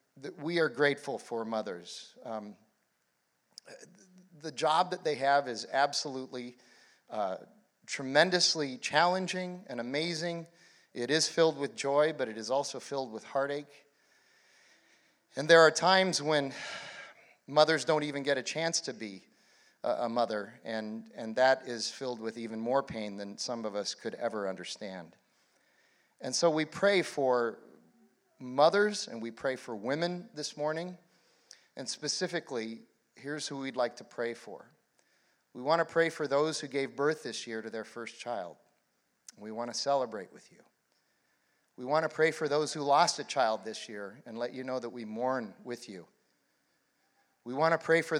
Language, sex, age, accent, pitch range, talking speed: English, male, 40-59, American, 120-160 Hz, 165 wpm